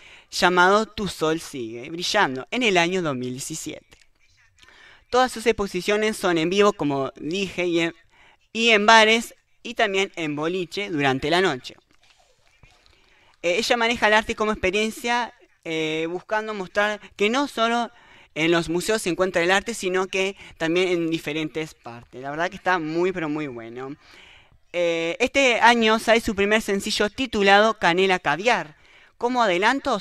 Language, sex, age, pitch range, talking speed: English, male, 20-39, 165-220 Hz, 150 wpm